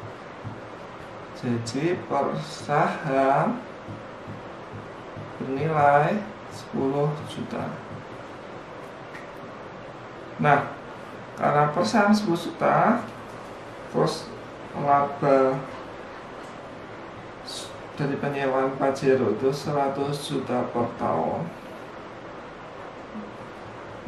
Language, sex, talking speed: Indonesian, male, 50 wpm